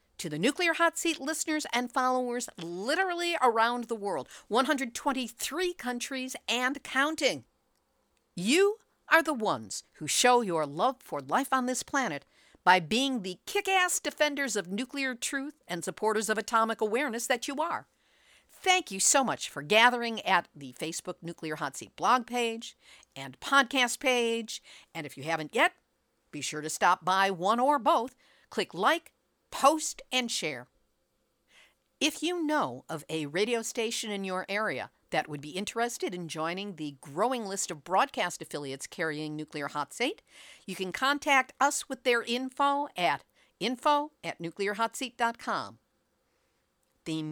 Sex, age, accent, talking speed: female, 50-69, American, 150 wpm